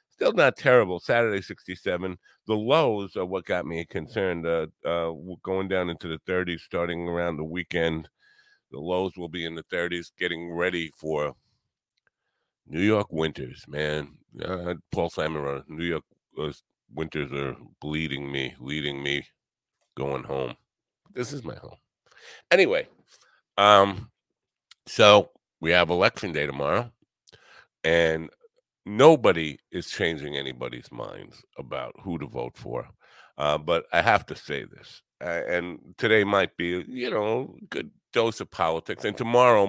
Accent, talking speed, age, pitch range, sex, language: American, 140 wpm, 50-69, 80-100 Hz, male, English